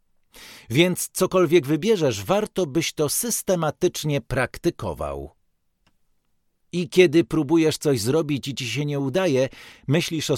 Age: 50-69